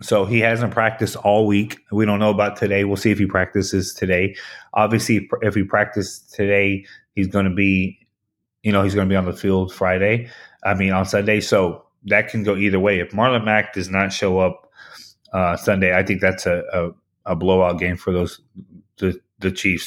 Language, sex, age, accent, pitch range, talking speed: English, male, 20-39, American, 95-105 Hz, 205 wpm